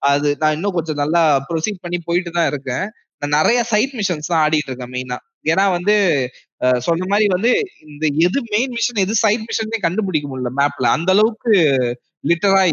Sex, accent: male, native